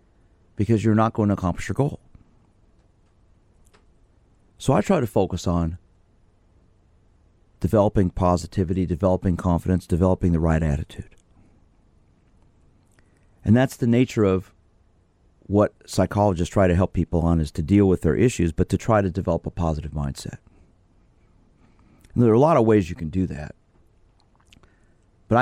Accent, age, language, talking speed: American, 40-59, English, 140 wpm